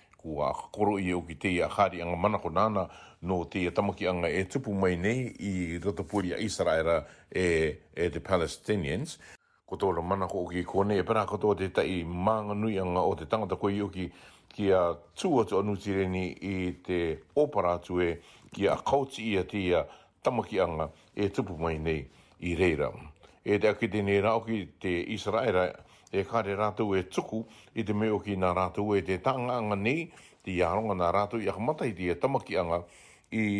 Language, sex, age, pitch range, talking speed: English, male, 60-79, 90-110 Hz, 140 wpm